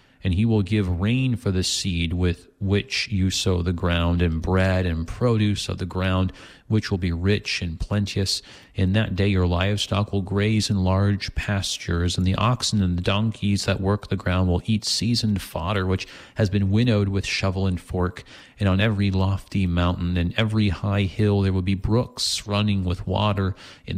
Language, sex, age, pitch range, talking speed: English, male, 40-59, 90-105 Hz, 190 wpm